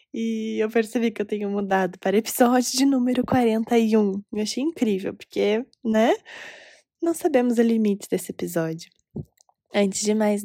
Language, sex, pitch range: Portuguese, female, 190-230 Hz